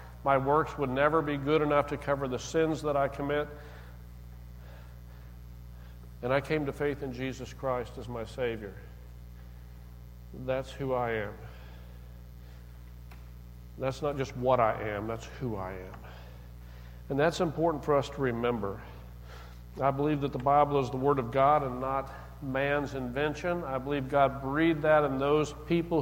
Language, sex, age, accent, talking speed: English, male, 50-69, American, 155 wpm